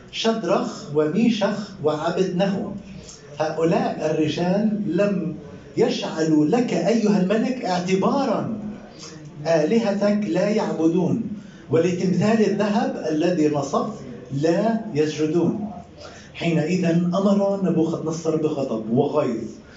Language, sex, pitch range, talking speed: Arabic, male, 160-210 Hz, 80 wpm